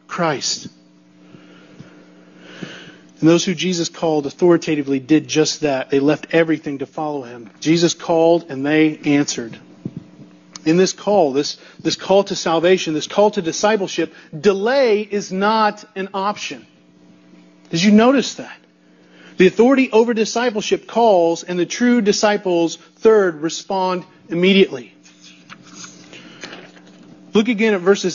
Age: 40-59